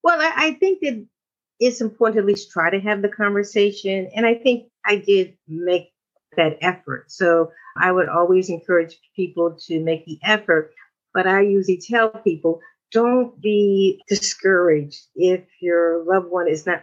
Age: 50-69